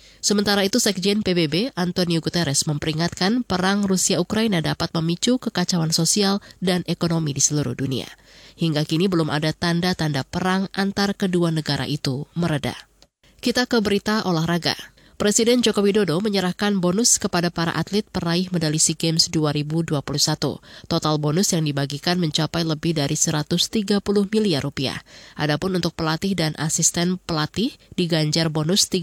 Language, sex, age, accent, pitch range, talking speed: Indonesian, female, 20-39, native, 150-185 Hz, 135 wpm